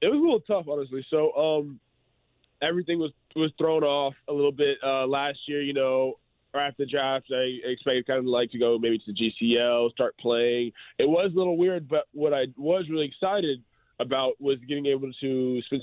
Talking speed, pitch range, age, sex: 210 wpm, 115-145 Hz, 20-39, male